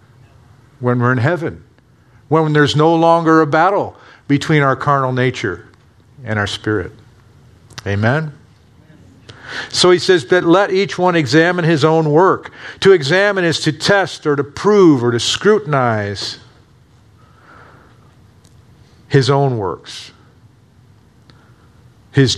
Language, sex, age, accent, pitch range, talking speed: English, male, 50-69, American, 115-150 Hz, 120 wpm